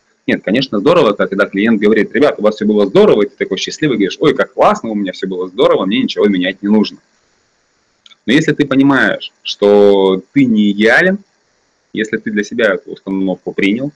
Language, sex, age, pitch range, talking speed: Russian, male, 30-49, 100-130 Hz, 195 wpm